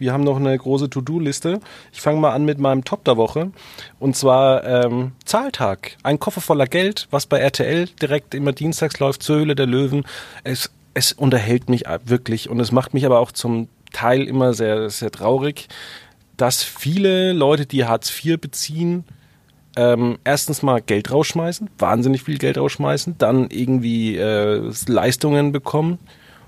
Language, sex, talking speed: German, male, 165 wpm